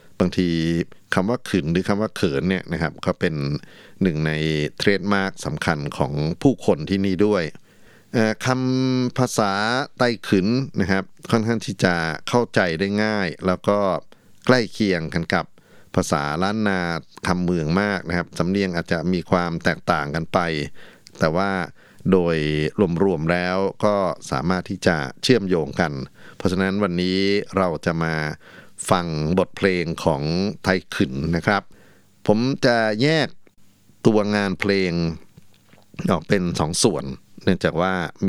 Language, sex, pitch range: Thai, male, 85-100 Hz